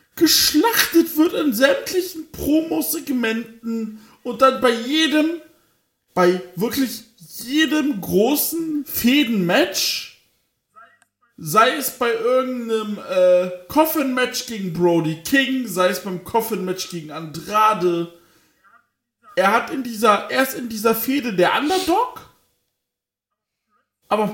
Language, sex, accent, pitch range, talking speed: German, male, German, 185-270 Hz, 100 wpm